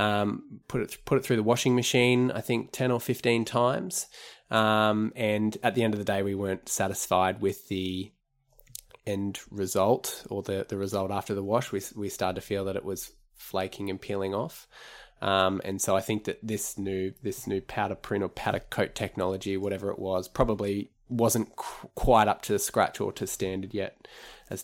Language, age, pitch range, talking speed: English, 20-39, 105-125 Hz, 195 wpm